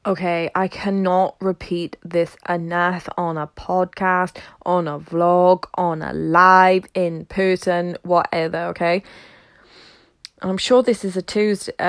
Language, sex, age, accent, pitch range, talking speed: English, female, 20-39, British, 180-240 Hz, 125 wpm